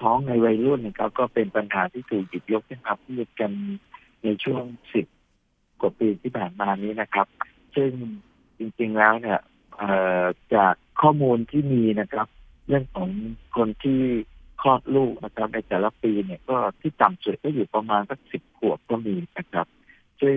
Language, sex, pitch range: Thai, male, 105-130 Hz